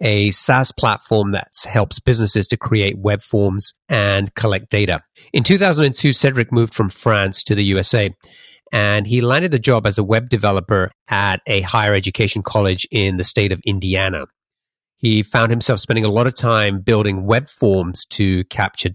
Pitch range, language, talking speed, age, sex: 100-125 Hz, English, 170 wpm, 30-49, male